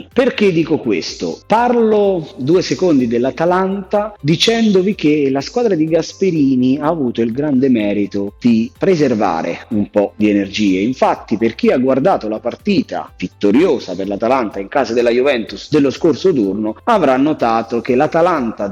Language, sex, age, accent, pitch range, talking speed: Italian, male, 30-49, native, 105-165 Hz, 145 wpm